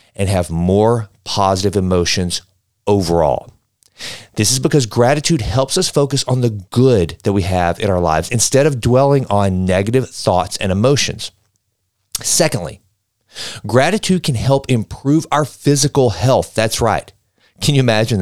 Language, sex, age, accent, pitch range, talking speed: English, male, 40-59, American, 100-135 Hz, 140 wpm